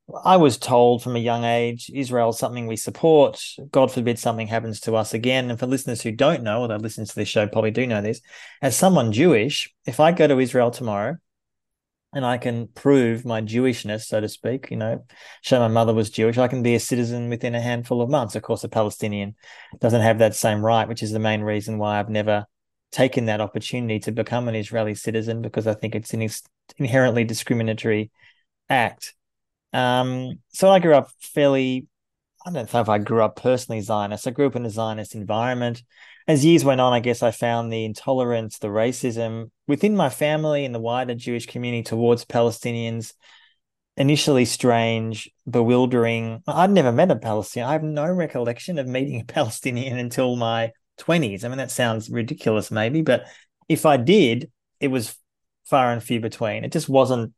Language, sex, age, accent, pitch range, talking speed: English, male, 20-39, Australian, 110-130 Hz, 190 wpm